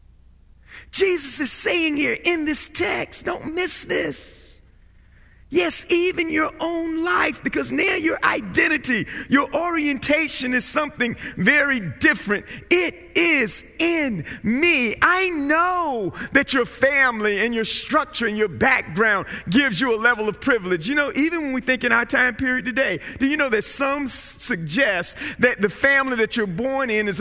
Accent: American